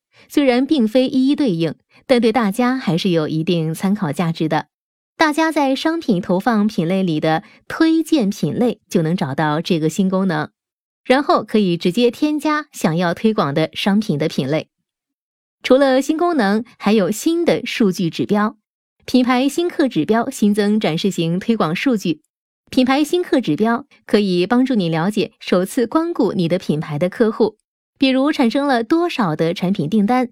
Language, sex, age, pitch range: Chinese, female, 20-39, 180-260 Hz